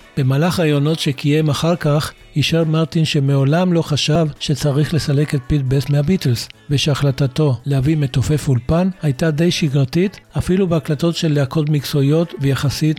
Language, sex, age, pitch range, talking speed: Hebrew, male, 60-79, 140-165 Hz, 130 wpm